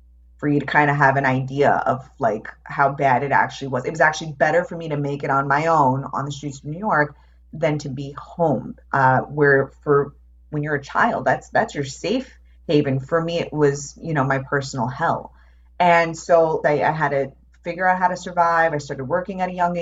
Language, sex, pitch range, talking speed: English, female, 140-170 Hz, 225 wpm